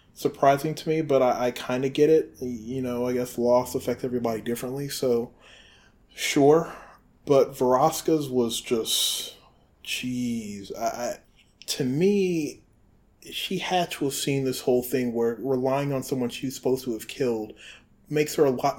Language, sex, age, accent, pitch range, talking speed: English, male, 20-39, American, 120-140 Hz, 150 wpm